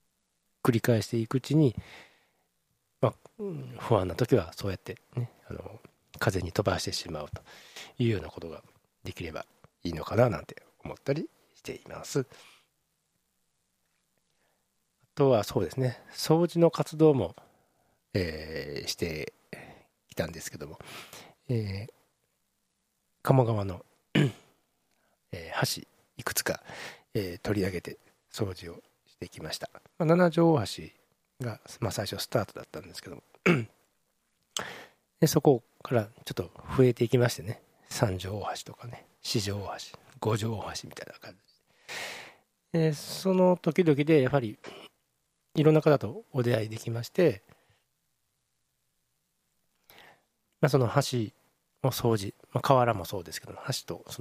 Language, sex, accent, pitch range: Japanese, male, native, 105-145 Hz